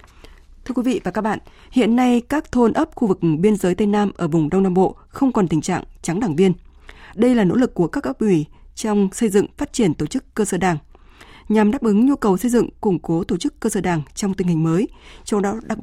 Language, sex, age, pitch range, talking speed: Vietnamese, female, 20-39, 180-235 Hz, 260 wpm